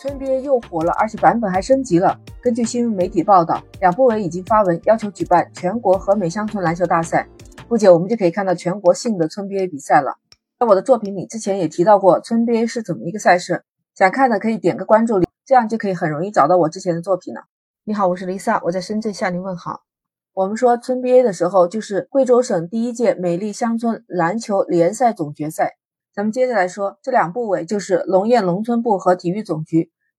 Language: Chinese